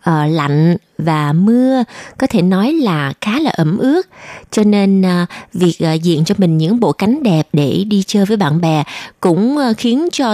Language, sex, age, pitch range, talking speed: Vietnamese, female, 20-39, 170-235 Hz, 195 wpm